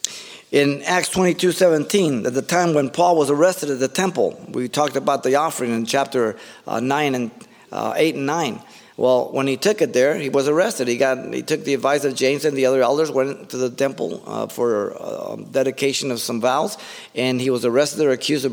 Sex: male